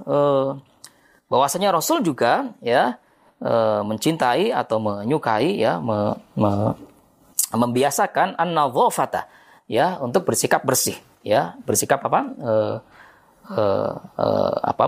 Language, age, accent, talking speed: Indonesian, 20-39, native, 70 wpm